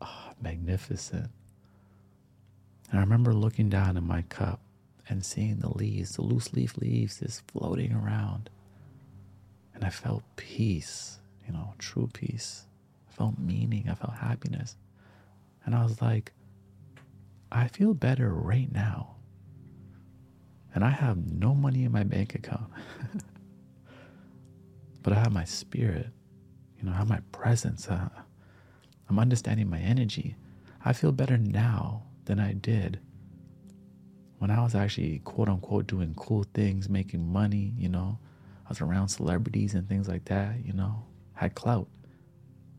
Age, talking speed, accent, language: 40-59, 140 wpm, American, English